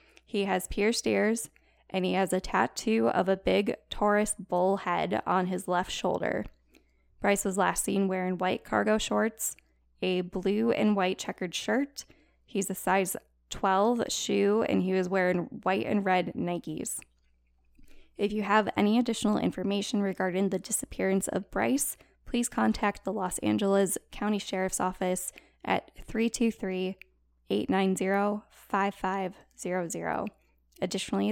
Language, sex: English, female